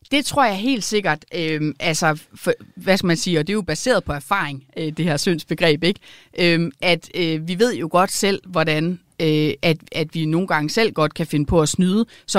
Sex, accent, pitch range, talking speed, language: female, native, 150-195 Hz, 225 wpm, Danish